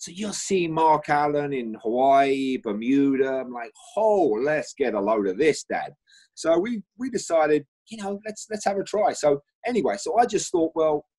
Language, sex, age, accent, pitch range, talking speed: English, male, 30-49, British, 150-245 Hz, 195 wpm